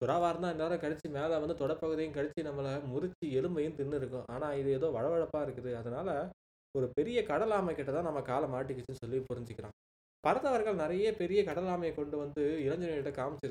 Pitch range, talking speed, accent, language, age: 130-165 Hz, 155 wpm, native, Tamil, 20-39